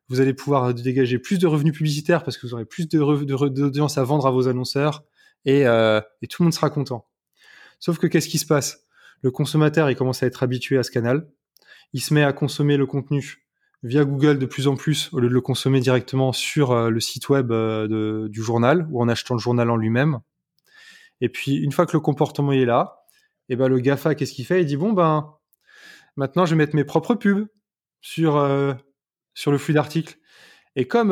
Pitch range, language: 130-155 Hz, French